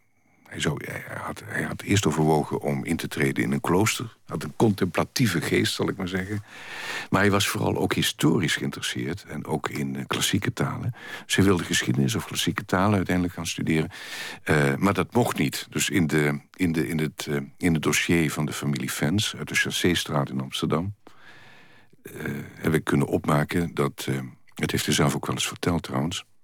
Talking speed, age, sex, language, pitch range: 195 wpm, 50-69, male, Dutch, 70-95 Hz